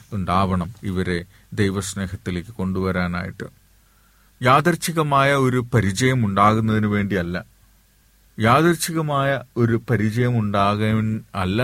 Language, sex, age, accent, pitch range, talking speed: Malayalam, male, 40-59, native, 95-110 Hz, 75 wpm